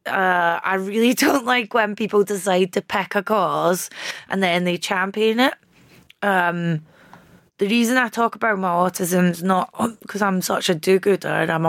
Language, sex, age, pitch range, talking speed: English, female, 20-39, 170-210 Hz, 165 wpm